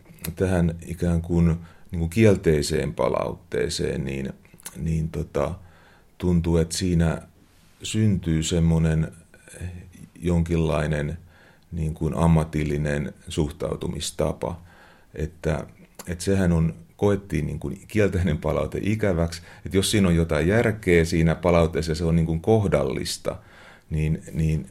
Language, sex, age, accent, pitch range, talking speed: Finnish, male, 30-49, native, 80-90 Hz, 85 wpm